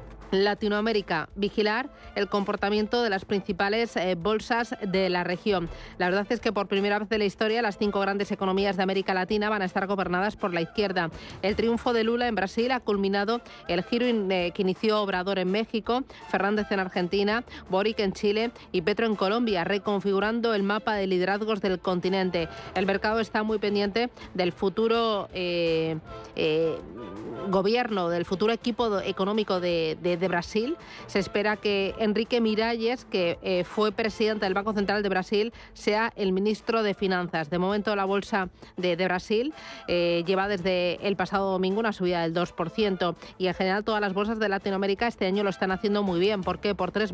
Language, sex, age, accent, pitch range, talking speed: Spanish, female, 40-59, Spanish, 190-220 Hz, 180 wpm